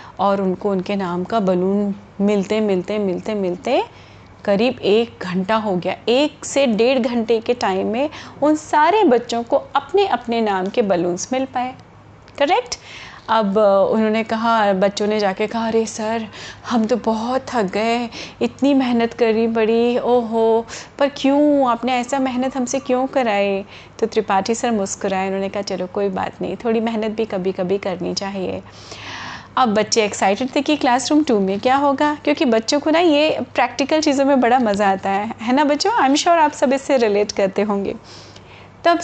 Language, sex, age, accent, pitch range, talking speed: Hindi, female, 30-49, native, 210-275 Hz, 175 wpm